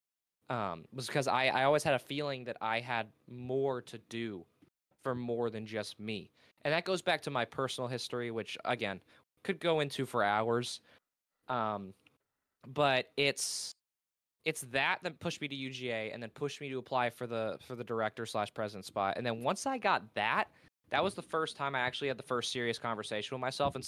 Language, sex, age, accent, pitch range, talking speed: English, male, 20-39, American, 110-140 Hz, 200 wpm